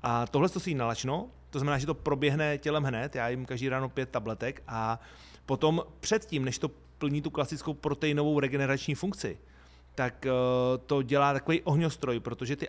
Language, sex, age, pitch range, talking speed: Slovak, male, 30-49, 130-150 Hz, 175 wpm